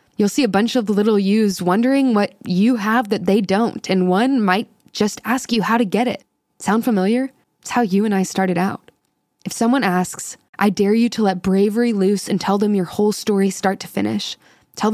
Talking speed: 215 wpm